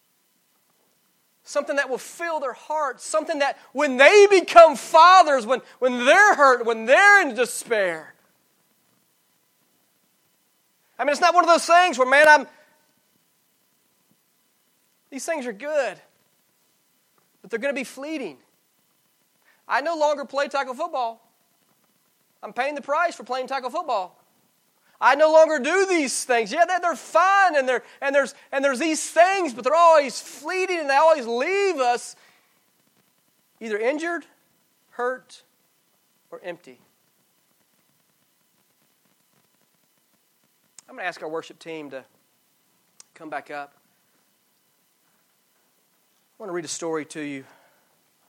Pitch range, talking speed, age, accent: 235-325 Hz, 125 wpm, 30-49, American